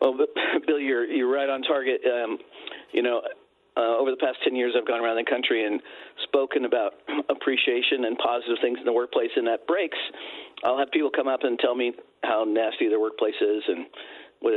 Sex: male